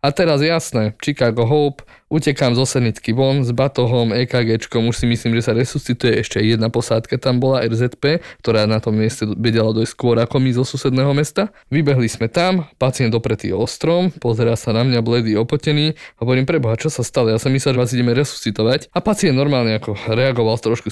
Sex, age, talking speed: male, 20-39, 195 wpm